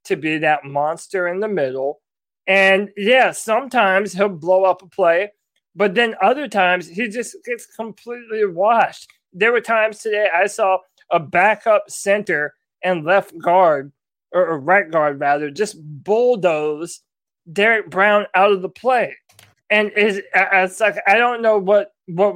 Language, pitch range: English, 155-205 Hz